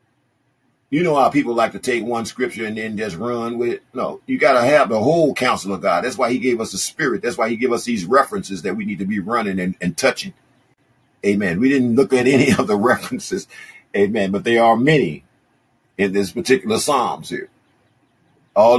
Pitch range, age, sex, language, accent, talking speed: 105-130 Hz, 50-69, male, English, American, 215 wpm